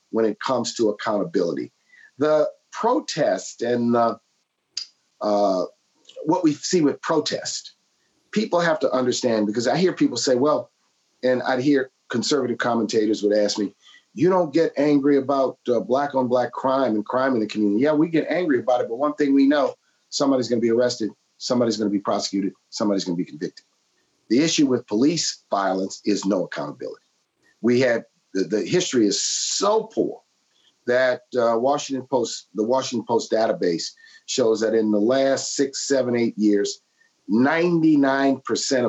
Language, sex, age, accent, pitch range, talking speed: English, male, 50-69, American, 115-160 Hz, 160 wpm